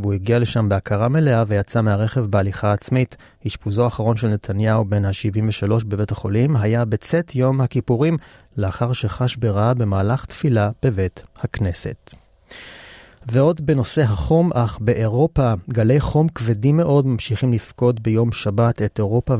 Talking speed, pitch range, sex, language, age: 125 wpm, 105-135 Hz, male, Hebrew, 30-49